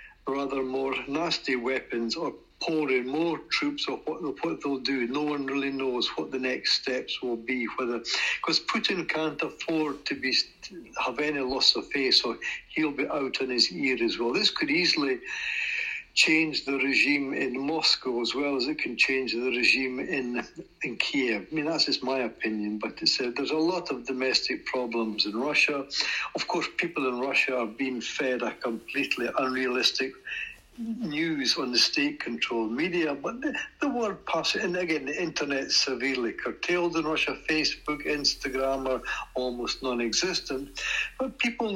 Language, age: English, 60-79